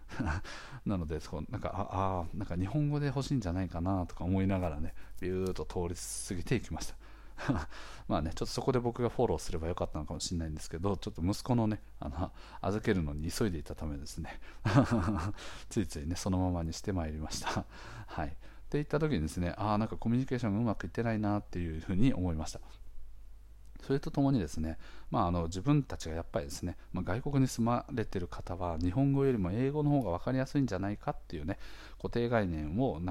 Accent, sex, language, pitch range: native, male, Japanese, 85-125 Hz